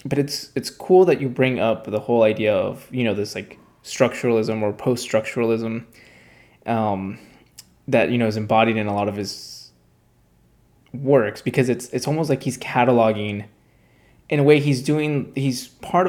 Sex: male